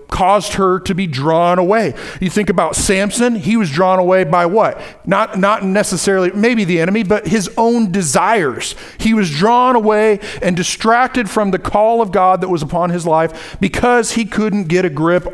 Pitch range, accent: 180-225 Hz, American